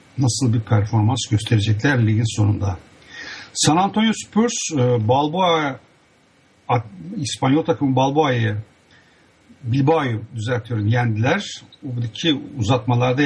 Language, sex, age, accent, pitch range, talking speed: English, male, 60-79, Turkish, 115-145 Hz, 85 wpm